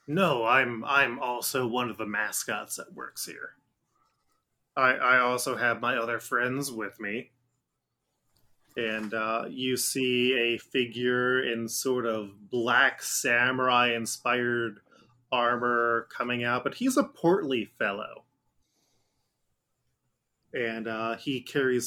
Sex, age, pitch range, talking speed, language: male, 20-39, 120-145 Hz, 120 wpm, English